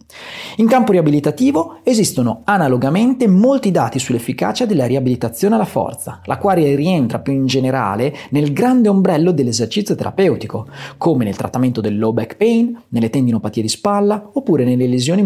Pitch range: 125-190 Hz